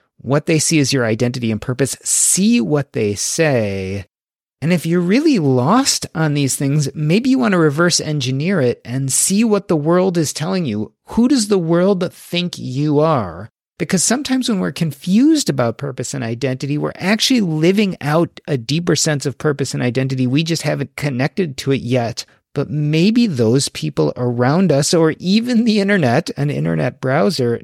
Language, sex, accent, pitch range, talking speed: English, male, American, 125-175 Hz, 180 wpm